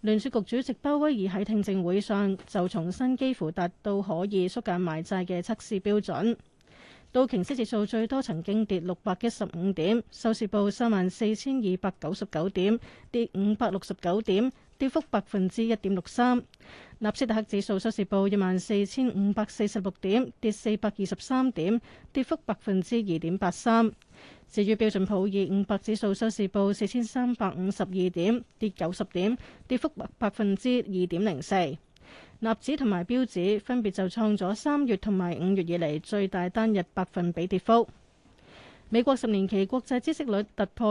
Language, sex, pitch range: Chinese, female, 190-230 Hz